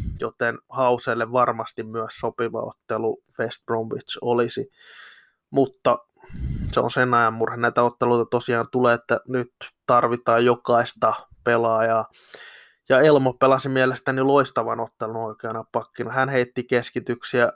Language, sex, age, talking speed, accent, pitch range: Finnish, male, 20-39, 120 wpm, native, 120-135 Hz